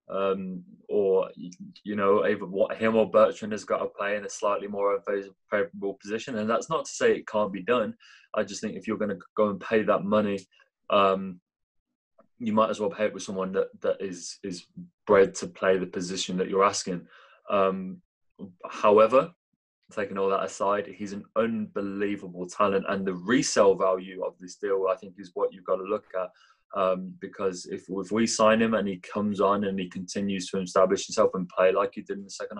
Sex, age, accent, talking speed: male, 20-39, British, 205 wpm